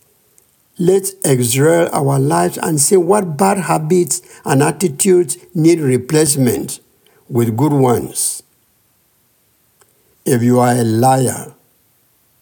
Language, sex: English, male